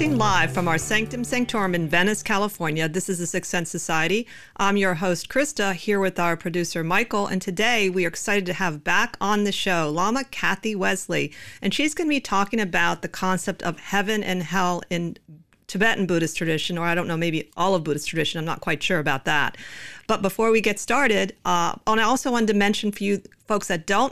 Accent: American